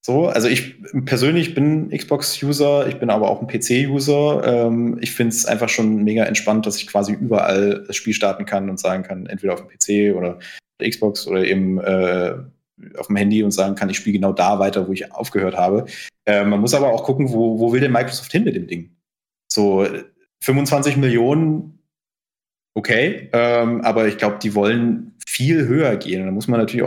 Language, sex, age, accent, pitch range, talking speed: German, male, 30-49, German, 105-135 Hz, 195 wpm